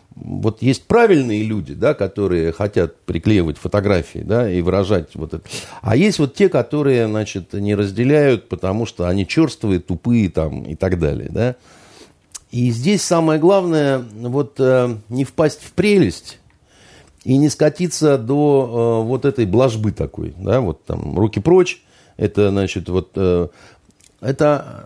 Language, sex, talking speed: Russian, male, 140 wpm